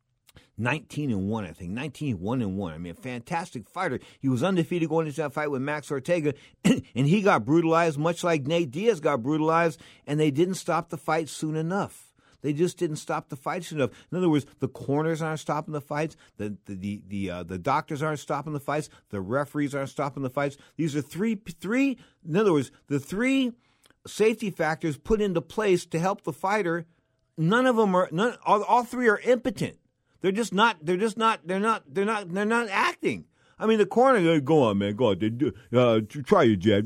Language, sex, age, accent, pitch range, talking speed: English, male, 50-69, American, 140-220 Hz, 210 wpm